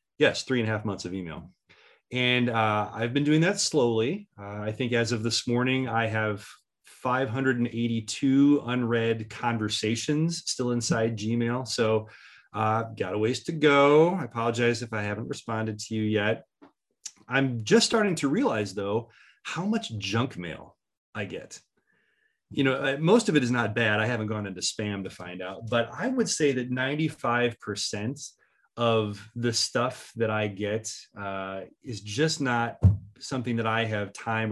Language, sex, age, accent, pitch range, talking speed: English, male, 30-49, American, 105-130 Hz, 170 wpm